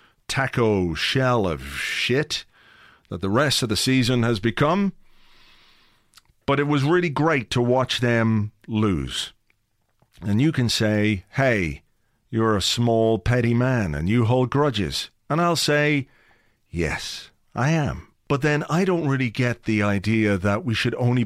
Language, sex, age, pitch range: English, male, 40-59, 110-150 Hz